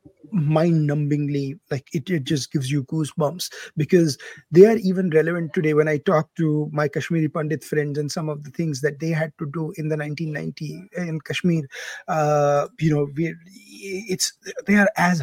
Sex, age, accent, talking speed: male, 30-49, Indian, 180 wpm